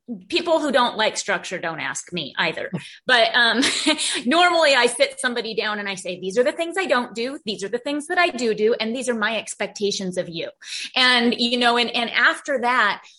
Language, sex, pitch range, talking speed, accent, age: English, female, 205-270 Hz, 220 wpm, American, 30-49